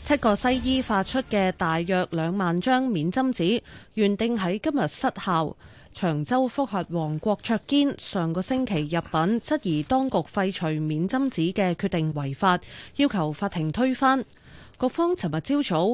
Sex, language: female, Chinese